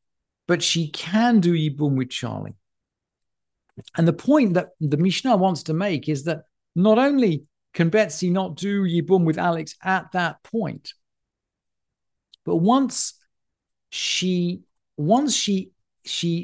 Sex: male